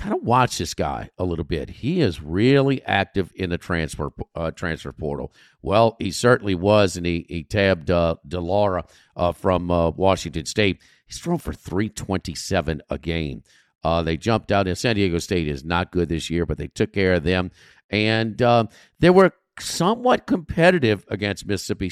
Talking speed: 190 wpm